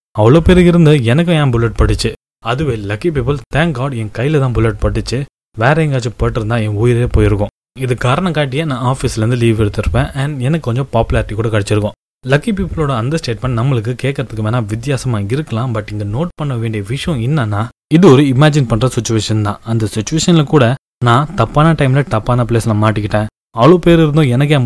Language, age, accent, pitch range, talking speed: Tamil, 20-39, native, 110-145 Hz, 170 wpm